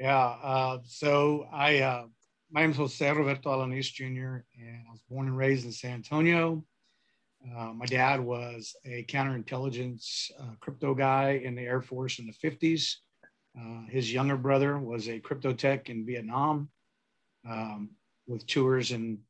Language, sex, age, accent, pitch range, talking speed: English, male, 50-69, American, 115-130 Hz, 160 wpm